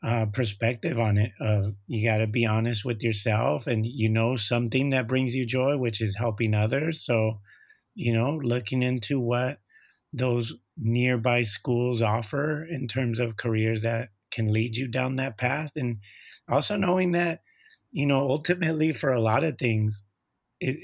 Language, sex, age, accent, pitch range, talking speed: English, male, 30-49, American, 110-125 Hz, 170 wpm